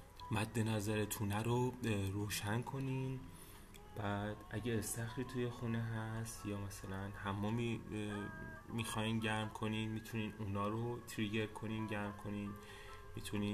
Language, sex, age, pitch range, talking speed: Persian, male, 30-49, 100-115 Hz, 100 wpm